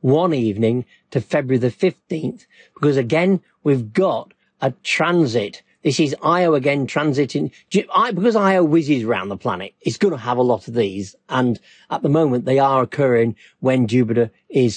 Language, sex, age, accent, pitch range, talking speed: English, male, 50-69, British, 130-175 Hz, 165 wpm